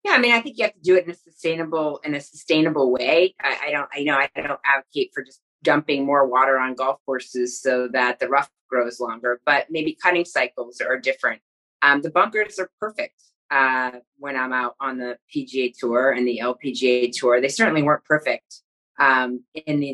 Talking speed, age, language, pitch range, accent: 205 wpm, 30-49, English, 135-165 Hz, American